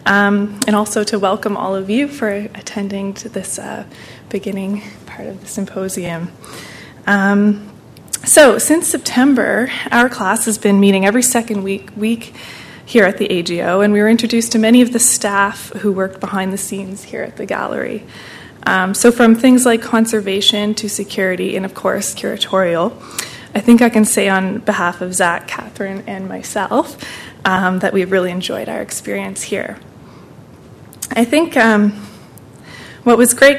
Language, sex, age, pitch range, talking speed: English, female, 20-39, 195-230 Hz, 165 wpm